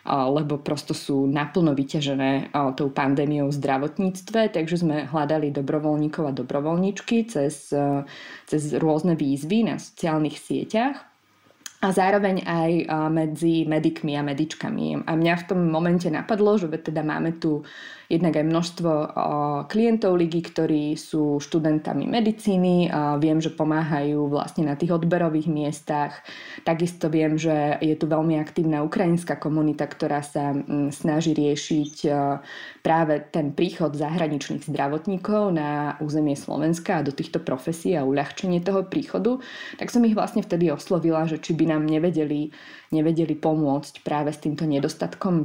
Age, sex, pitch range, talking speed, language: 20-39, female, 150-170 Hz, 135 wpm, Slovak